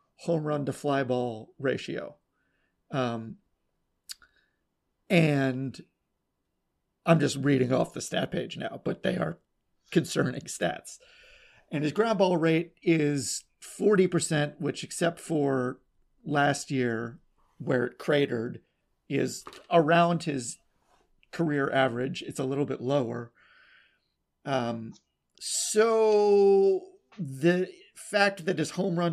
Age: 30-49